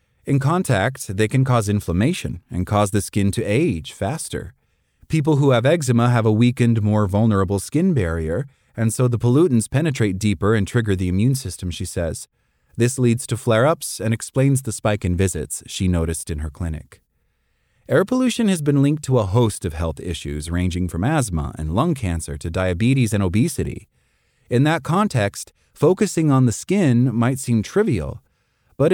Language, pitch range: English, 100-140 Hz